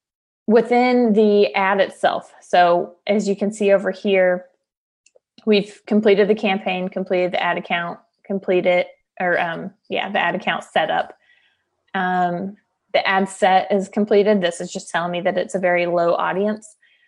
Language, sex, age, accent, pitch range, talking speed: English, female, 20-39, American, 185-220 Hz, 155 wpm